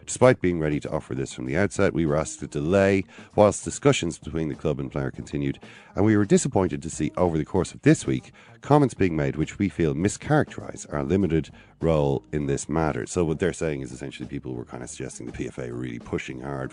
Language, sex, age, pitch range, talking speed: English, male, 40-59, 70-100 Hz, 225 wpm